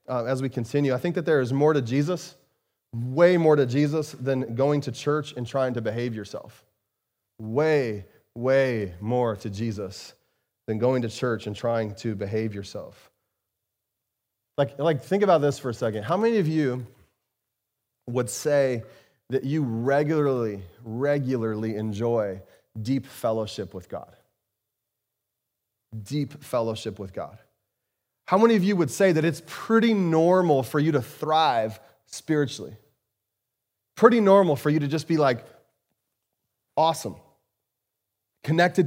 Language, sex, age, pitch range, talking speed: English, male, 30-49, 115-155 Hz, 140 wpm